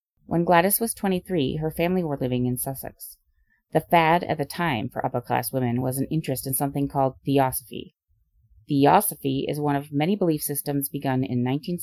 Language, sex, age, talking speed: English, female, 30-49, 180 wpm